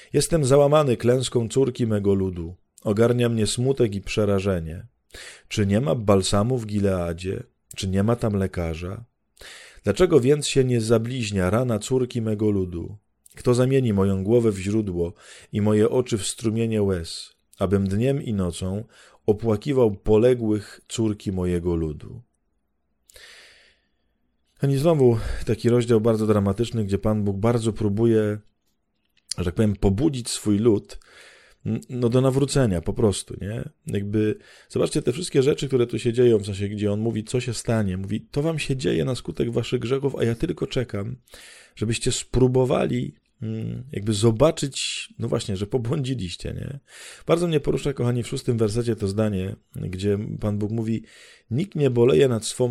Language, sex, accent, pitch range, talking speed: Polish, male, native, 100-125 Hz, 150 wpm